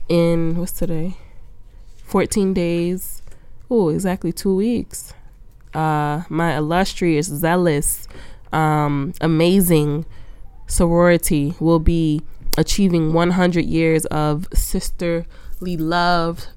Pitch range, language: 155-175 Hz, English